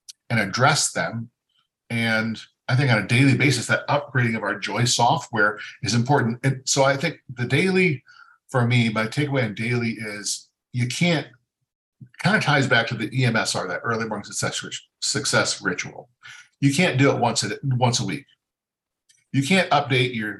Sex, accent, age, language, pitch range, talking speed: male, American, 50-69, English, 110-140 Hz, 170 wpm